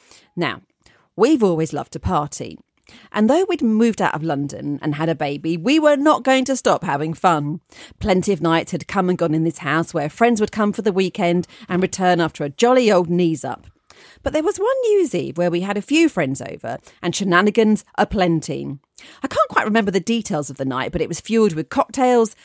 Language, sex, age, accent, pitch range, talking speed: English, female, 40-59, British, 160-220 Hz, 220 wpm